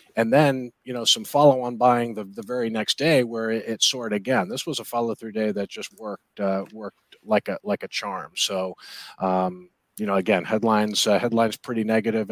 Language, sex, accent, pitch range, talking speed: English, male, American, 100-115 Hz, 205 wpm